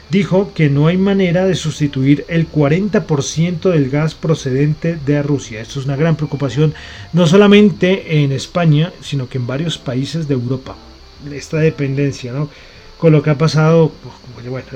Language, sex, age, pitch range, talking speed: Spanish, male, 30-49, 145-175 Hz, 160 wpm